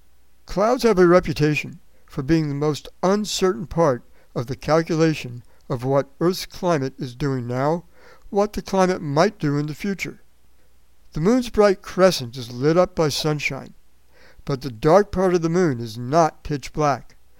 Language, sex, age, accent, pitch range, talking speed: English, male, 60-79, American, 130-175 Hz, 165 wpm